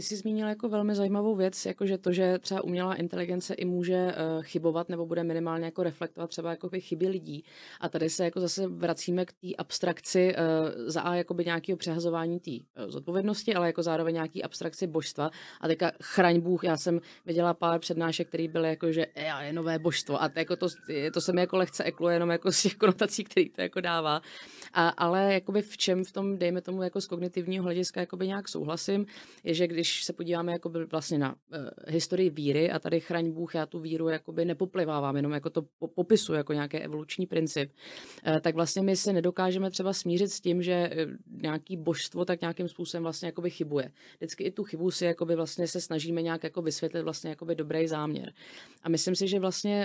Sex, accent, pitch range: female, native, 165-185 Hz